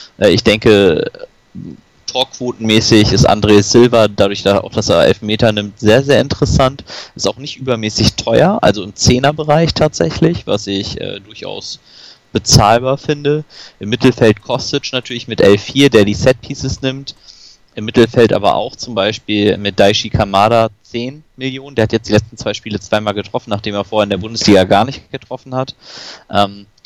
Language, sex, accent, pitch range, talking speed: German, male, German, 100-125 Hz, 160 wpm